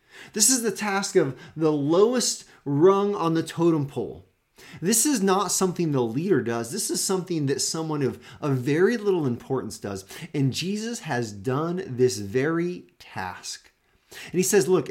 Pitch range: 115-185 Hz